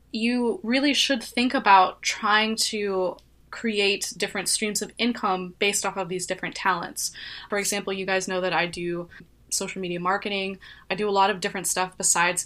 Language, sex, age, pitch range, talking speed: English, female, 20-39, 185-215 Hz, 180 wpm